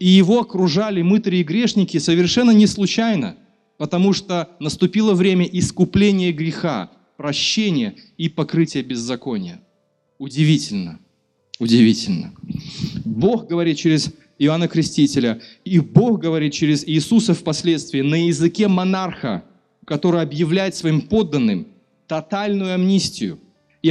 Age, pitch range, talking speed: 30-49, 135-190 Hz, 105 wpm